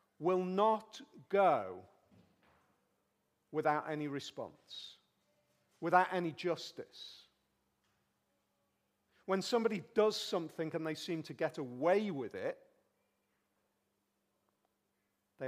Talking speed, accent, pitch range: 85 wpm, British, 150-205 Hz